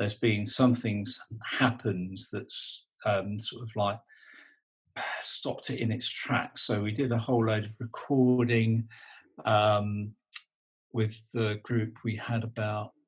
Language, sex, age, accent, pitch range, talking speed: English, male, 50-69, British, 105-120 Hz, 140 wpm